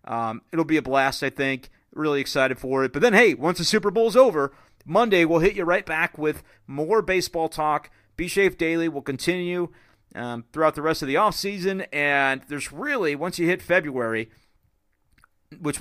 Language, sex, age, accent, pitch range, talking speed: English, male, 40-59, American, 135-170 Hz, 180 wpm